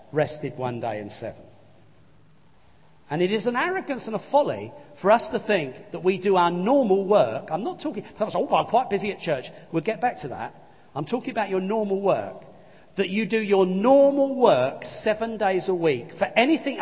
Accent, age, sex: British, 40-59, male